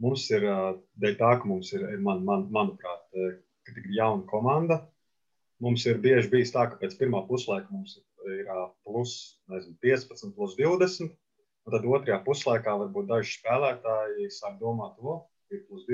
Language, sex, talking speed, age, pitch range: English, male, 145 wpm, 30-49, 100-135 Hz